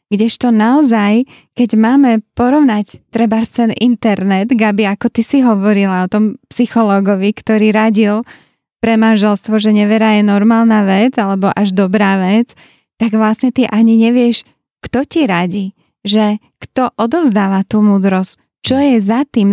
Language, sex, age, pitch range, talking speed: Slovak, female, 20-39, 210-240 Hz, 140 wpm